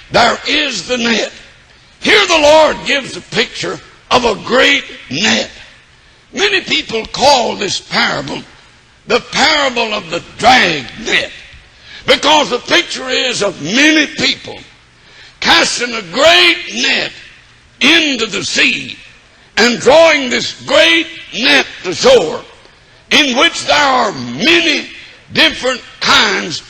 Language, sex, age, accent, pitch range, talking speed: English, male, 60-79, American, 240-325 Hz, 120 wpm